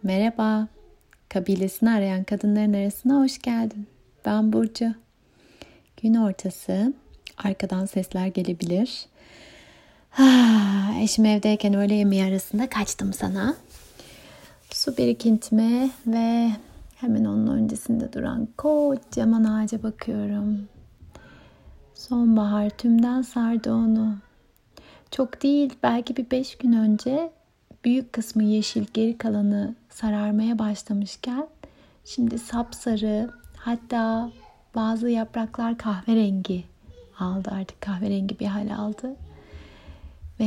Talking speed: 95 wpm